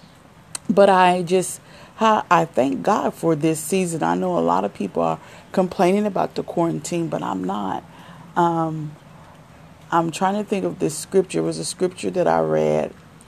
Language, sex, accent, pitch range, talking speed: English, female, American, 155-185 Hz, 170 wpm